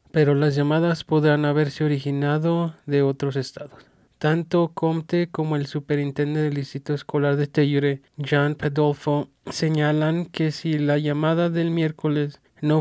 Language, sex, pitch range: English, male, 140-155 Hz